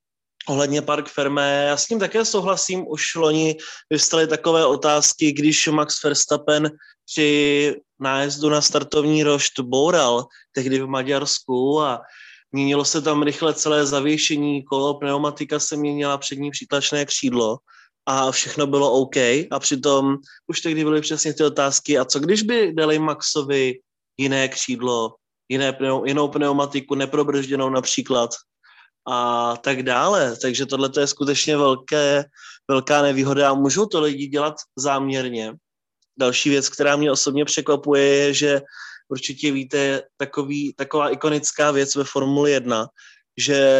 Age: 20-39